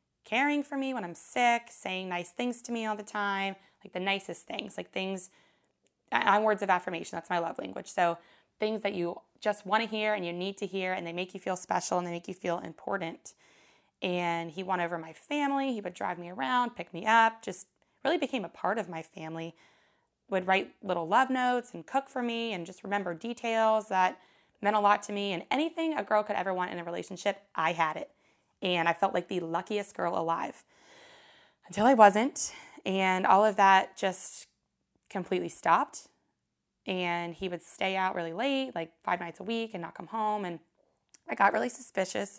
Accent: American